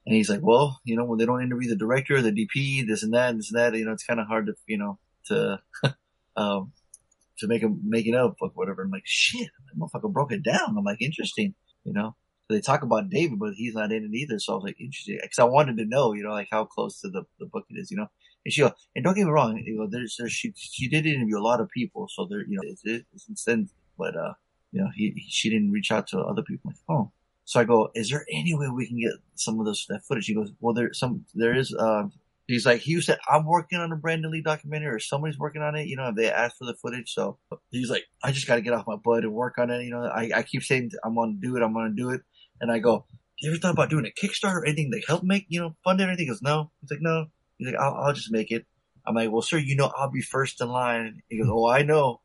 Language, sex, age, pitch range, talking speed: English, male, 20-39, 115-170 Hz, 295 wpm